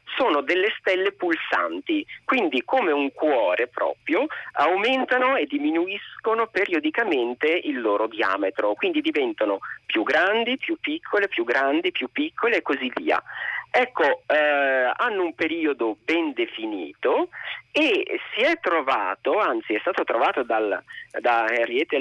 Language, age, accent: Italian, 40-59, native